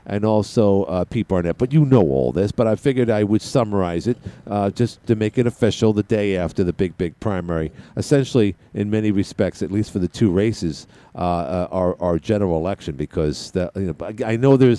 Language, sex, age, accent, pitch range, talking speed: English, male, 50-69, American, 90-120 Hz, 205 wpm